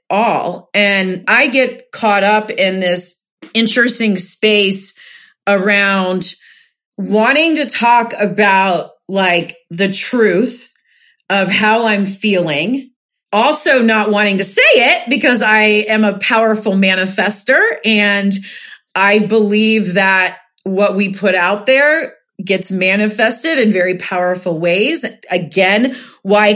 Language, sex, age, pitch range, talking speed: English, female, 40-59, 190-235 Hz, 115 wpm